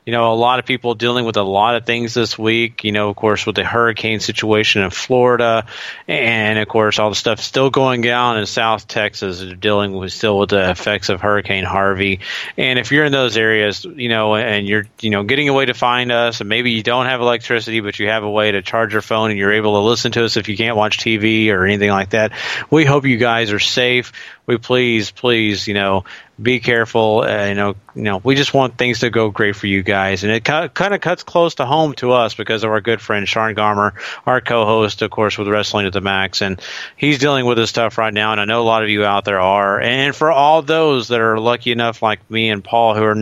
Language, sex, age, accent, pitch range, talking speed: English, male, 30-49, American, 105-120 Hz, 250 wpm